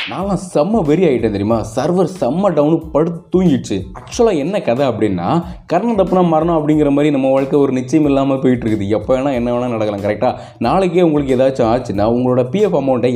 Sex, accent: male, native